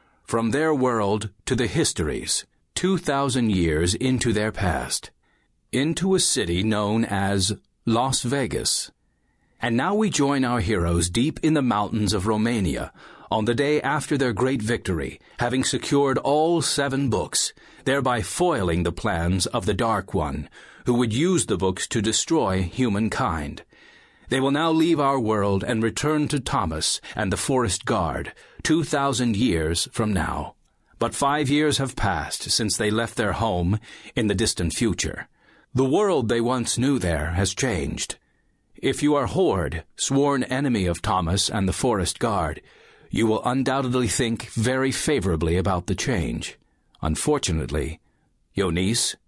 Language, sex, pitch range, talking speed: English, male, 100-135 Hz, 150 wpm